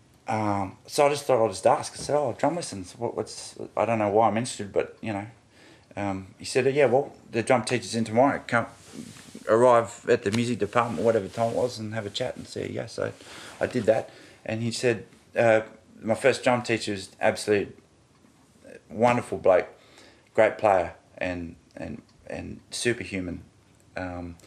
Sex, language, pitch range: male, English, 105-120 Hz